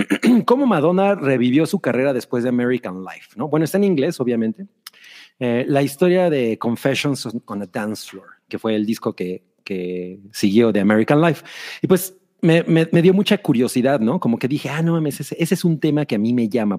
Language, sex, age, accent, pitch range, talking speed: Spanish, male, 40-59, Mexican, 115-165 Hz, 205 wpm